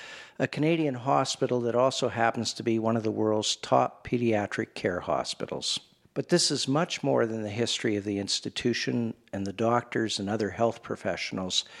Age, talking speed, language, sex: 50-69, 175 wpm, English, male